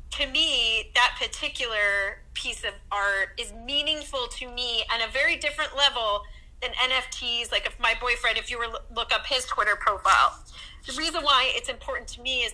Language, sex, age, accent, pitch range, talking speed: English, female, 30-49, American, 205-250 Hz, 180 wpm